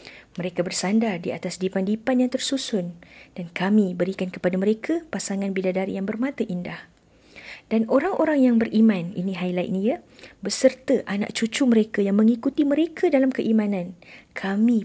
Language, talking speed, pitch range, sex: Malay, 140 wpm, 195-250 Hz, female